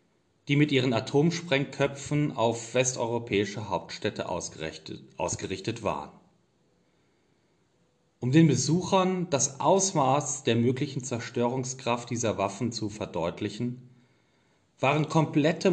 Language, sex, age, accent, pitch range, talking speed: German, male, 30-49, German, 110-150 Hz, 90 wpm